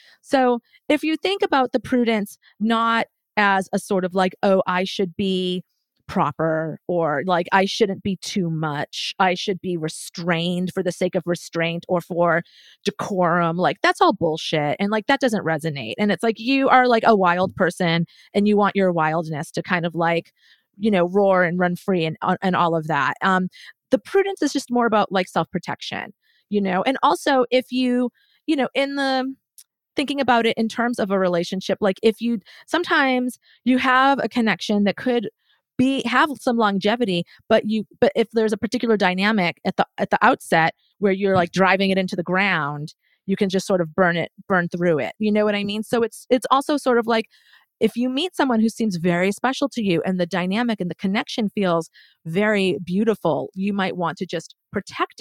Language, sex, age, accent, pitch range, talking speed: English, female, 30-49, American, 180-240 Hz, 200 wpm